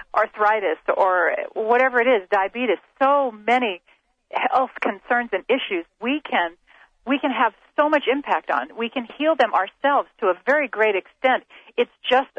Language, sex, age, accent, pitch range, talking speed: English, female, 40-59, American, 190-265 Hz, 160 wpm